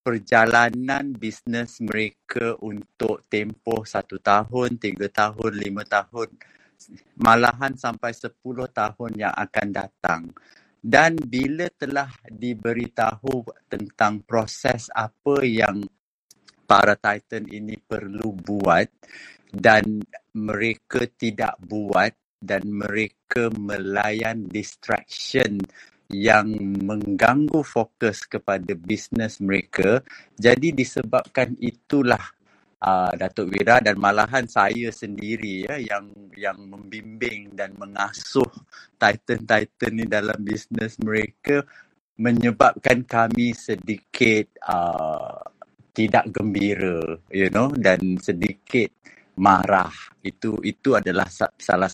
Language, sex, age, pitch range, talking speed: Malay, male, 50-69, 100-120 Hz, 95 wpm